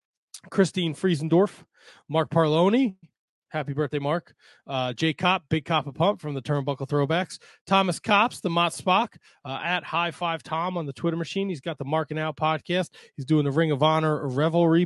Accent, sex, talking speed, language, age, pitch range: American, male, 180 wpm, English, 20-39, 140-175 Hz